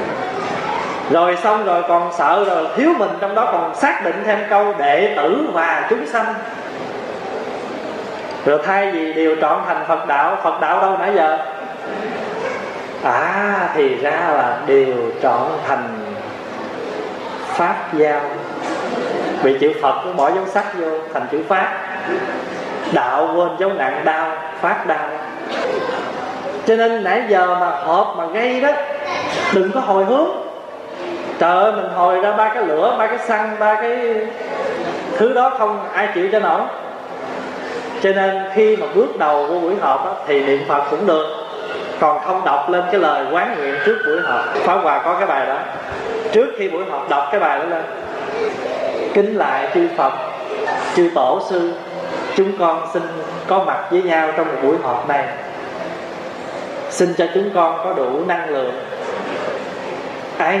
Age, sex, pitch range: 20-39, male, 165-240 Hz